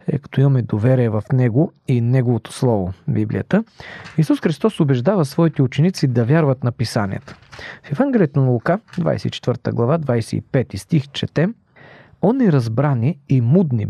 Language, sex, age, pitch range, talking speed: Bulgarian, male, 40-59, 120-160 Hz, 140 wpm